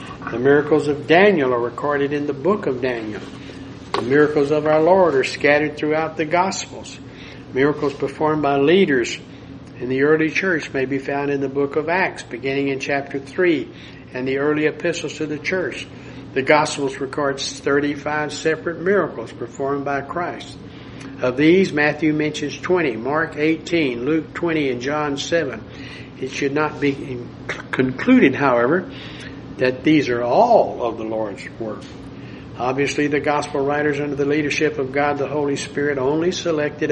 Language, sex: English, male